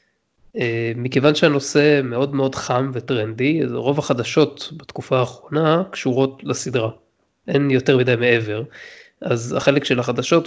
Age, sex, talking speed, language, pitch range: 20-39, male, 115 wpm, Hebrew, 125-150 Hz